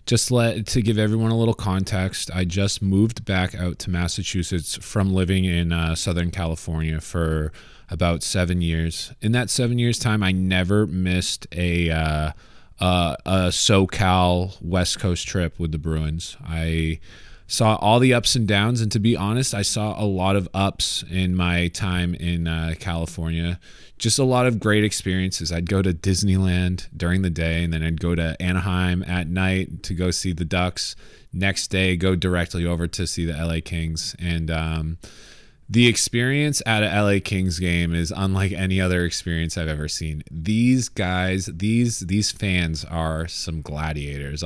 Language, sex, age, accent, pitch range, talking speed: English, male, 20-39, American, 85-105 Hz, 175 wpm